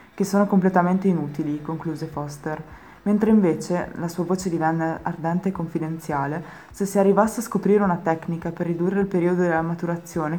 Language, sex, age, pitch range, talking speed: Italian, female, 20-39, 160-190 Hz, 160 wpm